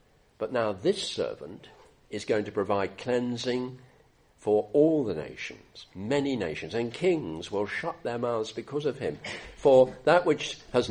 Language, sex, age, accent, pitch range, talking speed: English, male, 50-69, British, 100-145 Hz, 155 wpm